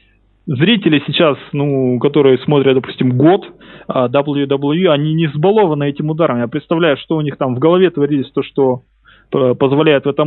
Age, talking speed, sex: 20-39, 165 wpm, male